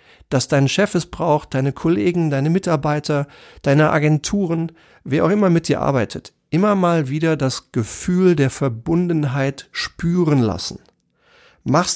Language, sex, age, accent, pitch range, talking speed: German, male, 40-59, German, 135-170 Hz, 135 wpm